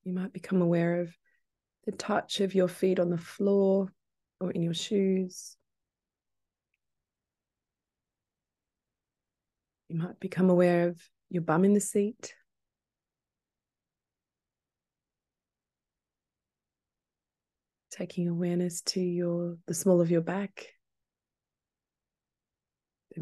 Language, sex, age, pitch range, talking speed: English, female, 20-39, 175-195 Hz, 95 wpm